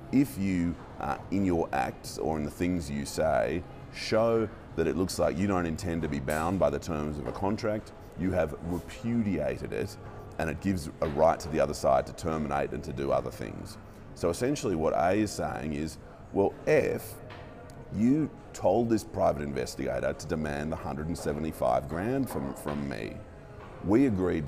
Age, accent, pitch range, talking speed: 30-49, Australian, 75-100 Hz, 180 wpm